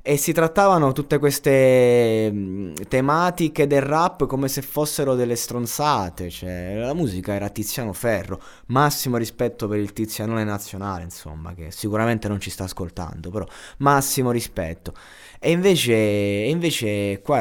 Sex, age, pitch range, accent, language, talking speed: male, 20-39, 95-125 Hz, native, Italian, 135 wpm